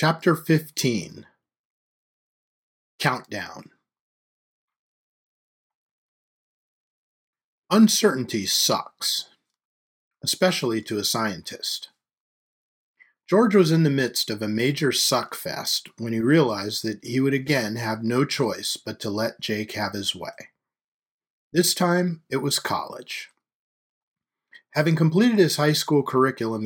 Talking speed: 105 wpm